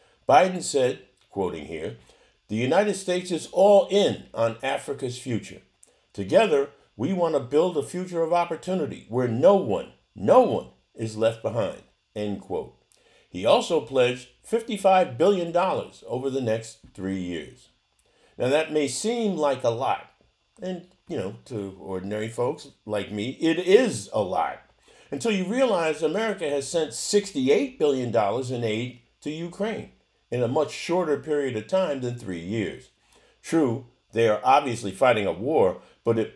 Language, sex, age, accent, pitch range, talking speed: English, male, 50-69, American, 115-180 Hz, 150 wpm